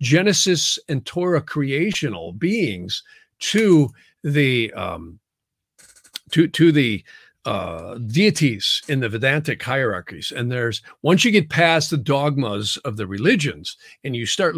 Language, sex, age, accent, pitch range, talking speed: English, male, 50-69, American, 115-160 Hz, 130 wpm